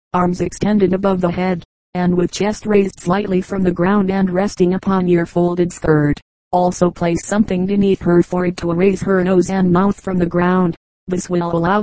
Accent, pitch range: American, 175-195 Hz